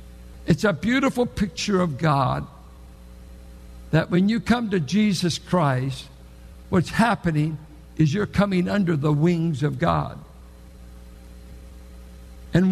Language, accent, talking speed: English, American, 115 wpm